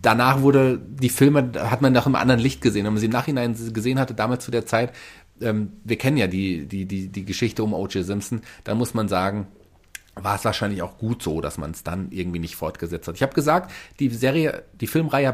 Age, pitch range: 40-59, 105-140 Hz